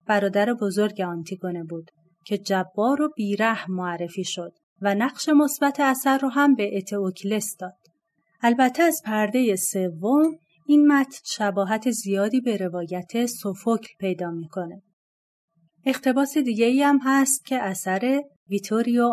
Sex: female